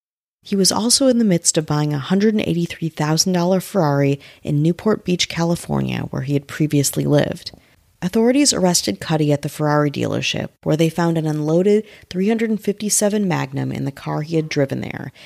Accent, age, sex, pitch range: American, 30-49, female, 150-205 Hz